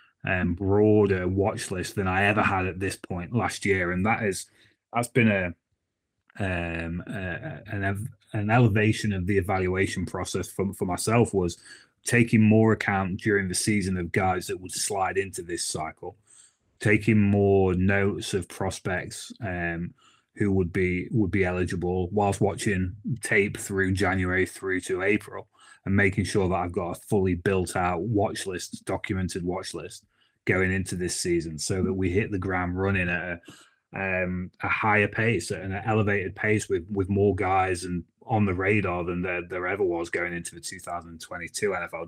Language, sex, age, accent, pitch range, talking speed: English, male, 30-49, British, 90-105 Hz, 170 wpm